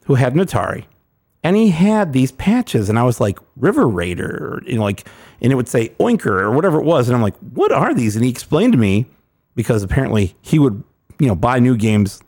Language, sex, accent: English, male, American